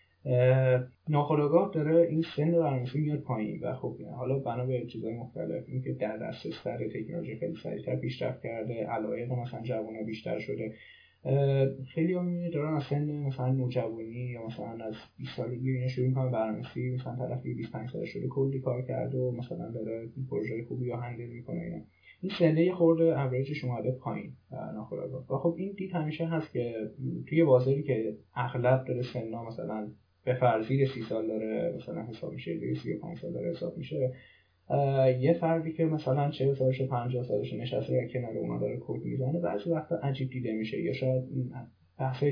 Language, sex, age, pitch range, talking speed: Persian, male, 10-29, 120-150 Hz, 145 wpm